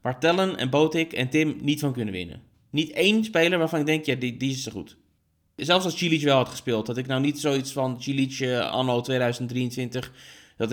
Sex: male